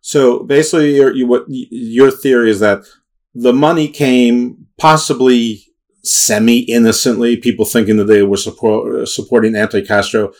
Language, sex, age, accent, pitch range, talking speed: English, male, 50-69, American, 100-120 Hz, 120 wpm